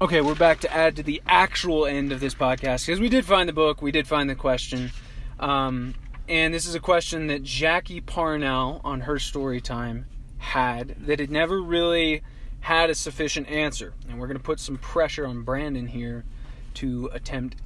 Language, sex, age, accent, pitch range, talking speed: English, male, 20-39, American, 125-150 Hz, 195 wpm